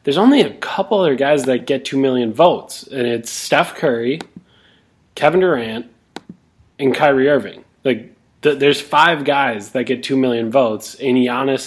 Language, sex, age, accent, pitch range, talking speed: English, male, 20-39, American, 120-145 Hz, 165 wpm